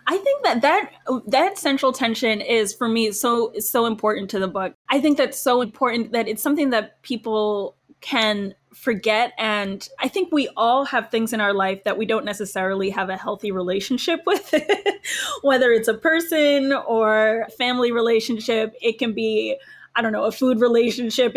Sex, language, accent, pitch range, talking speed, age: female, English, American, 215-255 Hz, 175 wpm, 20-39